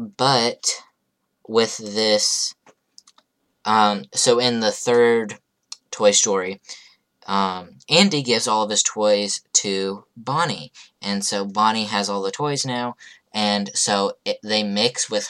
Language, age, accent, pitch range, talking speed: English, 10-29, American, 100-120 Hz, 125 wpm